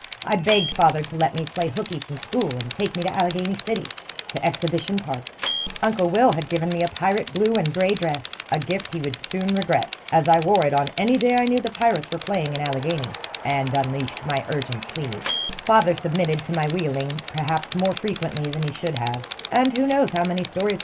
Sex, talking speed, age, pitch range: female, 215 wpm, 40-59, 160-210 Hz